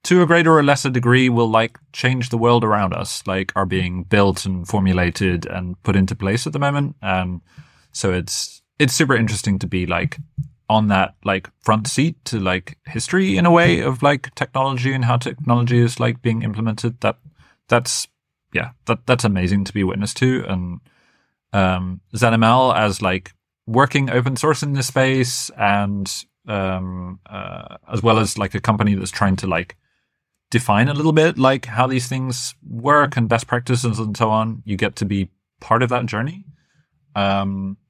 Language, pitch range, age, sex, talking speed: English, 95-130 Hz, 30-49, male, 180 wpm